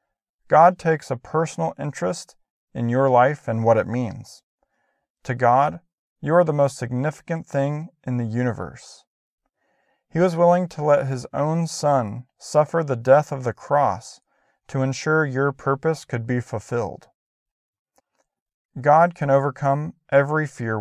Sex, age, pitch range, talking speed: male, 40-59, 125-160 Hz, 140 wpm